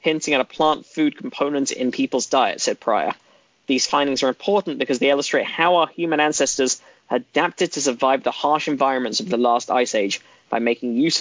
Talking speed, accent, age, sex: 195 wpm, British, 10-29, male